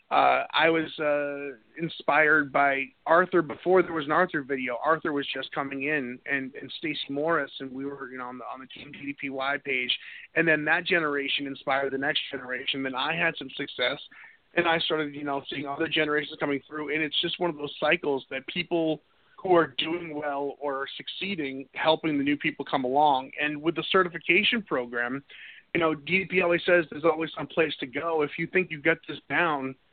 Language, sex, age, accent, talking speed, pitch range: English, male, 30-49, American, 205 wpm, 140-170 Hz